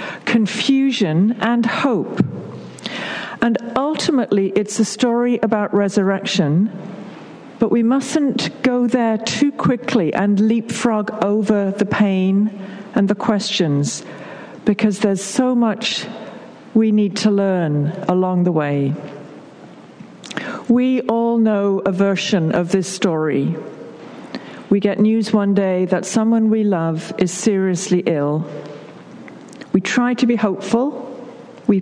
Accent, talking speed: British, 115 wpm